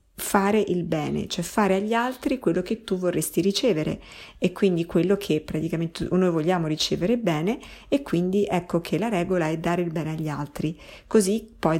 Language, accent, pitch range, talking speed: Italian, native, 155-195 Hz, 180 wpm